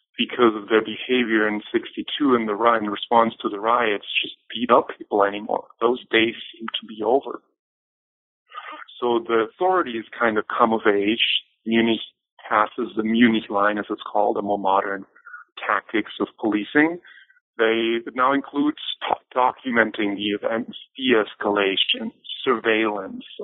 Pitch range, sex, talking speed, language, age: 105-145 Hz, male, 145 wpm, English, 30-49